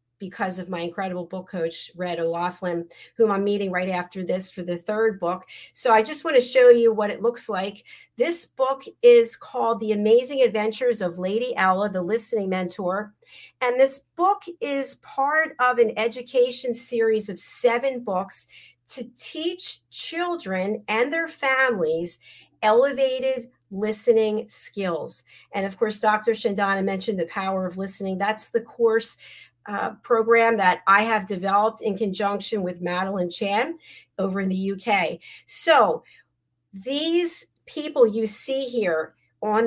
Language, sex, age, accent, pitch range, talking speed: English, female, 40-59, American, 190-245 Hz, 145 wpm